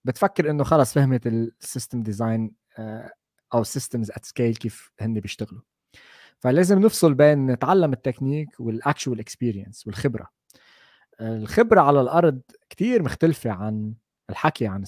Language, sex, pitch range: Arabic, male, 115-155 Hz